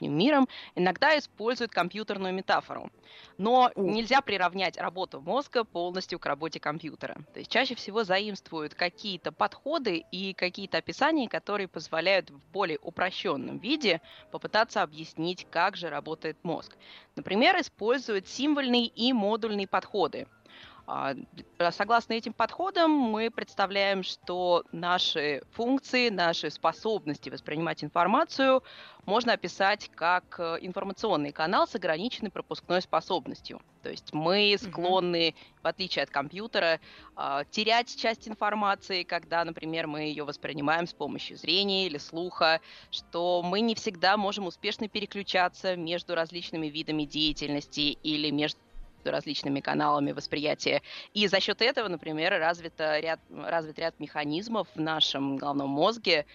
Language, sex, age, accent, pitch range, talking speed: Russian, female, 20-39, native, 160-215 Hz, 120 wpm